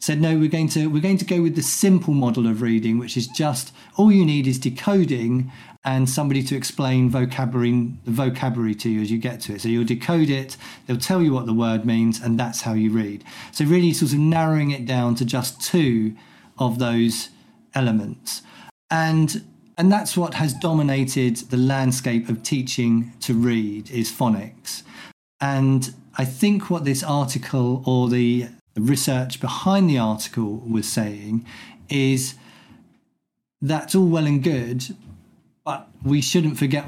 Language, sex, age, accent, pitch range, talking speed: English, male, 50-69, British, 120-155 Hz, 170 wpm